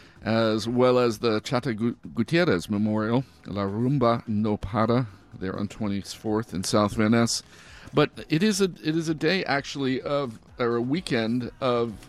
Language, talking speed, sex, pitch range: English, 155 wpm, male, 110-130 Hz